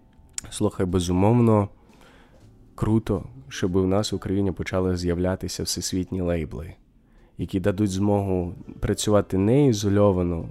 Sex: male